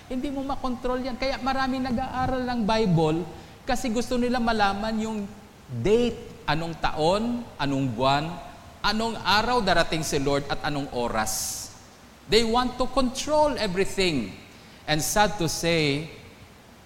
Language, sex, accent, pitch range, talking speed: English, male, Filipino, 110-170 Hz, 130 wpm